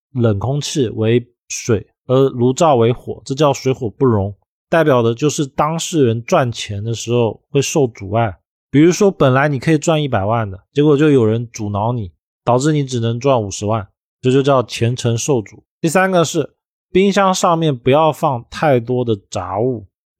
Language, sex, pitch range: Chinese, male, 115-155 Hz